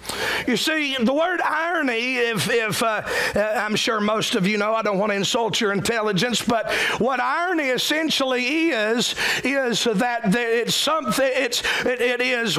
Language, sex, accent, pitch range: English, male, American, 215-265 Hz